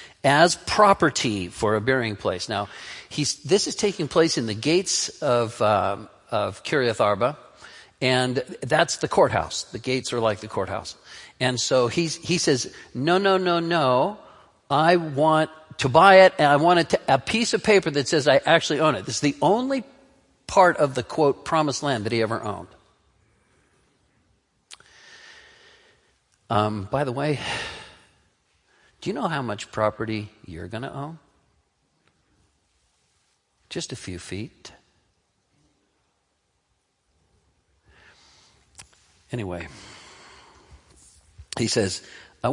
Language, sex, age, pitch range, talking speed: English, male, 50-69, 105-155 Hz, 135 wpm